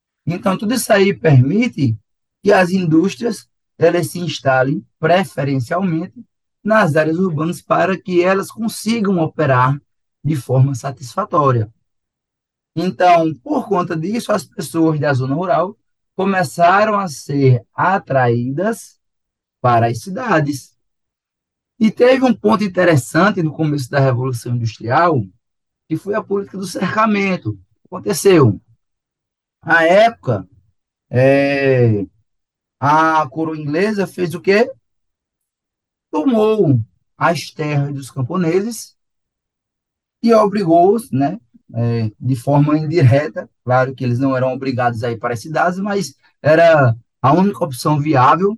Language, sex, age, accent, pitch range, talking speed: Portuguese, male, 20-39, Brazilian, 130-190 Hz, 115 wpm